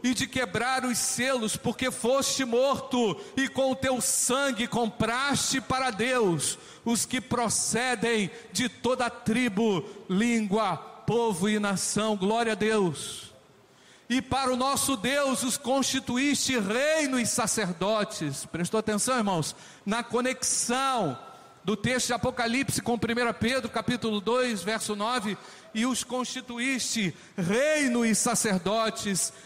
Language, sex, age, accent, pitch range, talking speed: Portuguese, male, 50-69, Brazilian, 195-255 Hz, 125 wpm